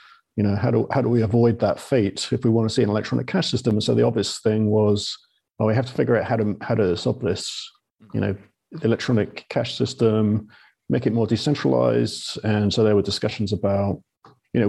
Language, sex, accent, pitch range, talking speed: English, male, British, 105-125 Hz, 220 wpm